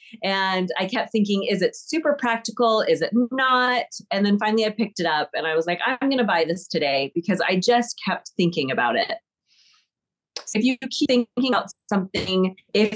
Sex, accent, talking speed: female, American, 195 wpm